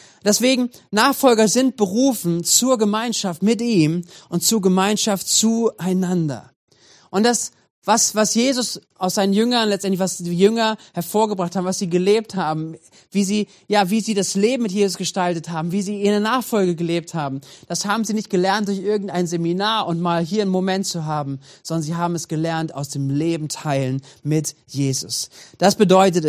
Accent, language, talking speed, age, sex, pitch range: German, German, 170 wpm, 30-49, male, 165-210 Hz